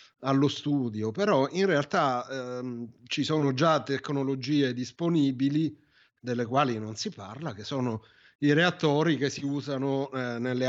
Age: 30-49